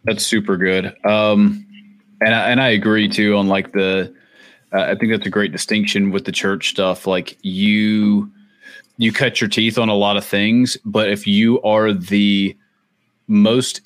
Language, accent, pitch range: English, American, 100-125 Hz